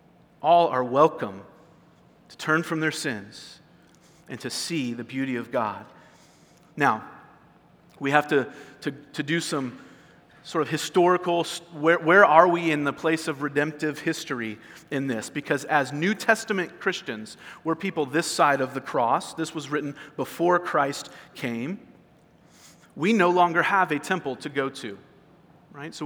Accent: American